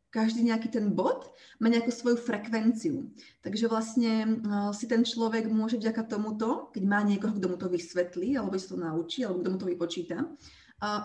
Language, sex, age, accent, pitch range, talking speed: Czech, female, 30-49, native, 205-255 Hz, 190 wpm